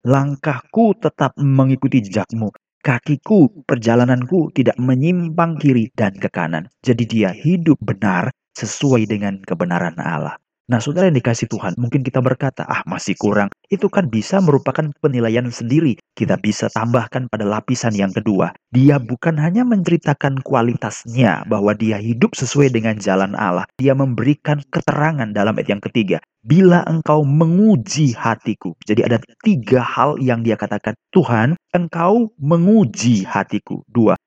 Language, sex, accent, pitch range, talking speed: Indonesian, male, native, 115-155 Hz, 140 wpm